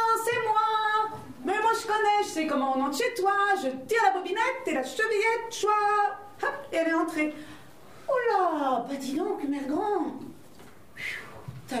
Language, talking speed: French, 180 wpm